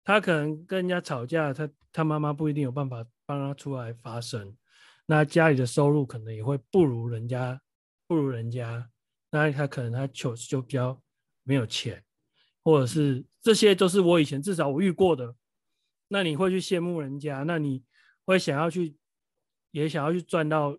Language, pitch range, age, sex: Chinese, 120-160 Hz, 30-49, male